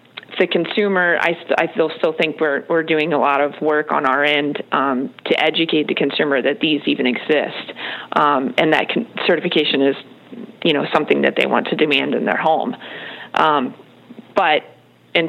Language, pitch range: English, 150-170 Hz